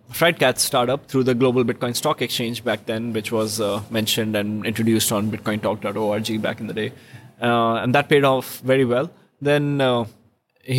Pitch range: 115-135 Hz